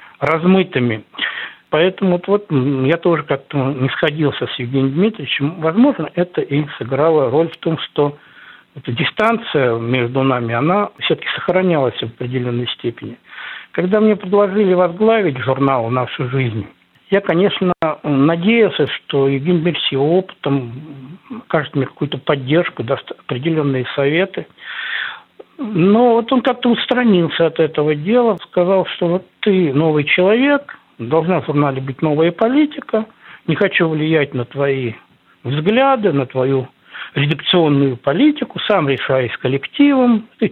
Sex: male